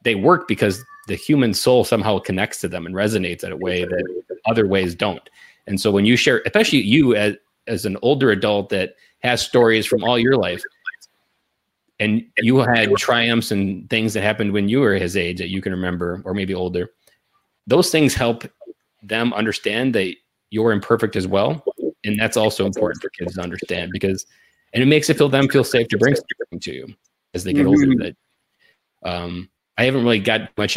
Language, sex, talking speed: English, male, 195 wpm